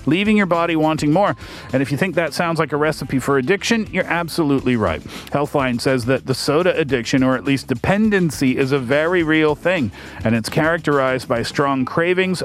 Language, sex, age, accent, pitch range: Korean, male, 40-59, American, 130-175 Hz